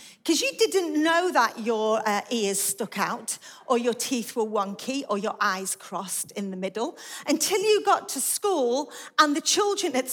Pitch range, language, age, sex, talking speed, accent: 220-295 Hz, English, 40-59, female, 185 wpm, British